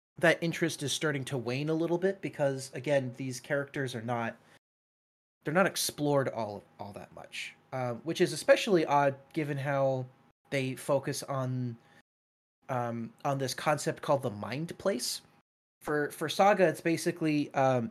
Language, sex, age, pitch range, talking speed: English, male, 30-49, 125-160 Hz, 155 wpm